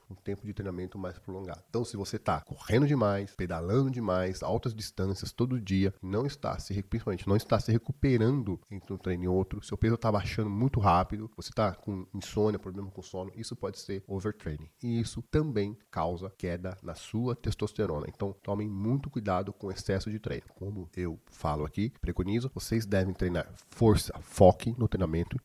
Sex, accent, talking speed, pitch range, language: male, Brazilian, 180 wpm, 95-115 Hz, Portuguese